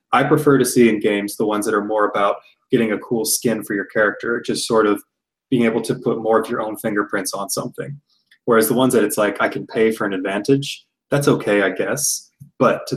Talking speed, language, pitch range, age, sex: 235 wpm, English, 105-130 Hz, 20-39, male